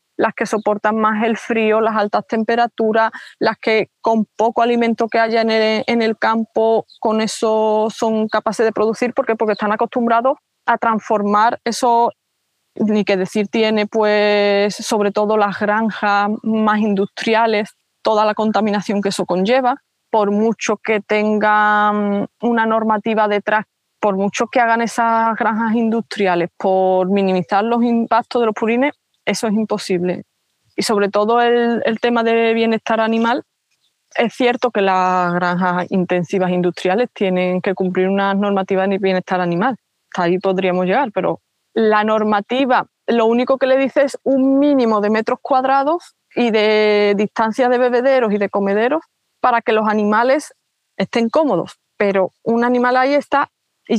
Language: Spanish